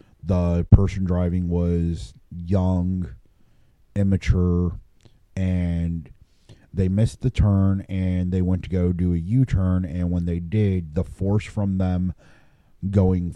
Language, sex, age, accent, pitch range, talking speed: English, male, 30-49, American, 85-100 Hz, 125 wpm